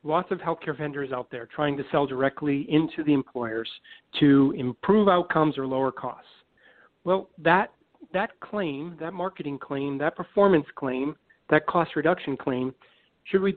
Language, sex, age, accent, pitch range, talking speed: English, male, 40-59, American, 135-175 Hz, 150 wpm